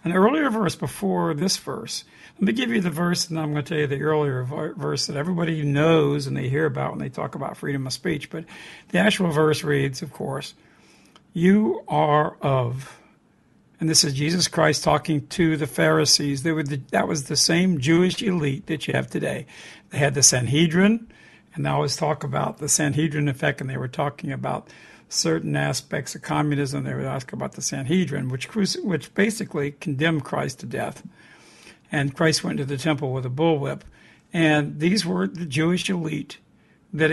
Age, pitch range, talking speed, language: 60-79, 140-165 Hz, 190 wpm, English